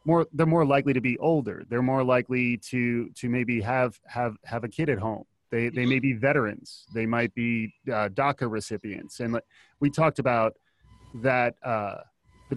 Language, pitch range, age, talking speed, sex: English, 110-130 Hz, 30-49, 180 wpm, male